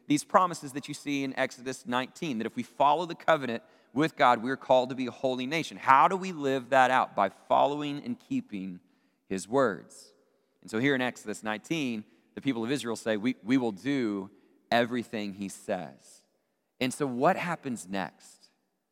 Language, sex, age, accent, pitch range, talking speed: English, male, 40-59, American, 100-130 Hz, 185 wpm